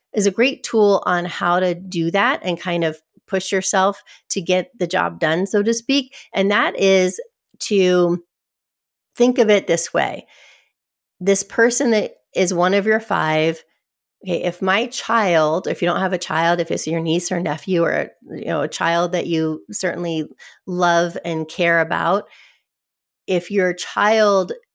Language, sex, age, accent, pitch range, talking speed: English, female, 30-49, American, 165-200 Hz, 170 wpm